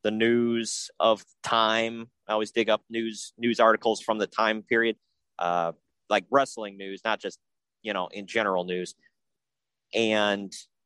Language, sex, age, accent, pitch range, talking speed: English, male, 30-49, American, 105-120 Hz, 150 wpm